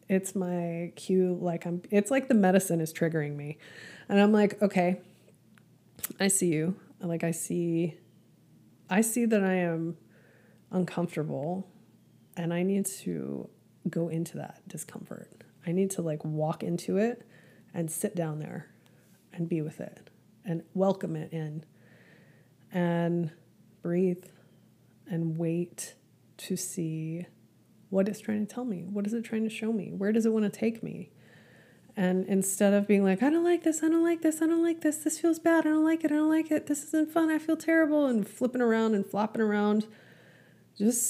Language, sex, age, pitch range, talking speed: English, female, 20-39, 170-220 Hz, 180 wpm